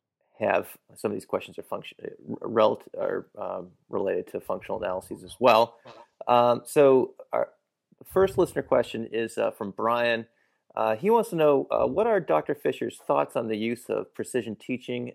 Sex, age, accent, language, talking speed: male, 30-49, American, English, 170 wpm